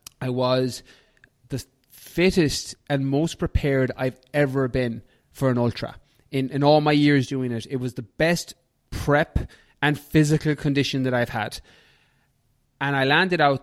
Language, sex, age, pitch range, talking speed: English, male, 20-39, 120-140 Hz, 155 wpm